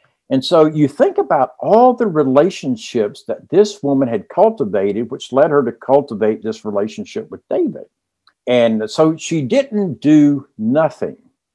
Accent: American